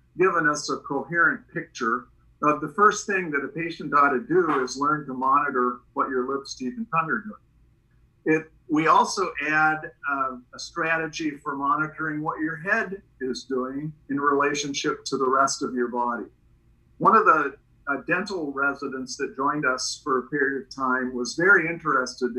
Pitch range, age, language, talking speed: 125-155 Hz, 50-69, English, 175 wpm